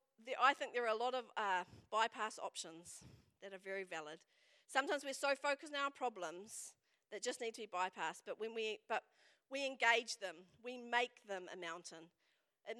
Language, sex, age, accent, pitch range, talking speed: English, female, 40-59, Australian, 195-265 Hz, 190 wpm